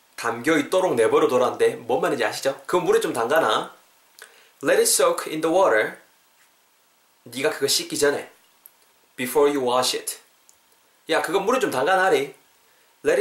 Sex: male